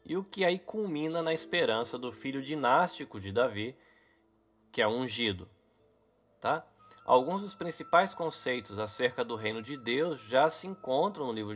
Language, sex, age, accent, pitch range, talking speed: Portuguese, male, 20-39, Brazilian, 110-165 Hz, 160 wpm